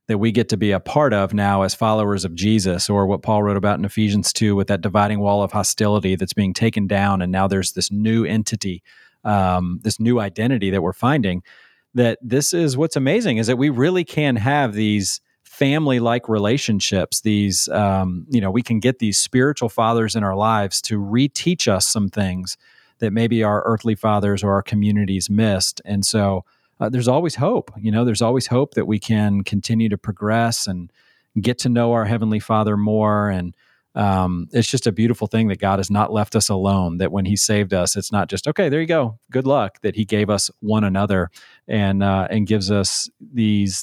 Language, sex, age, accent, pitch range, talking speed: English, male, 40-59, American, 100-120 Hz, 205 wpm